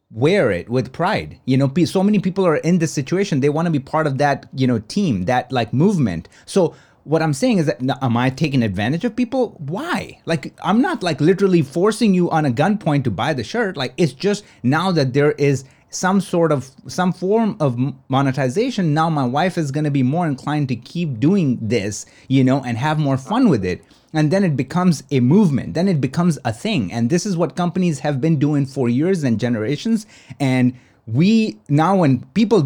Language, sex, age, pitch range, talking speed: English, male, 30-49, 130-175 Hz, 215 wpm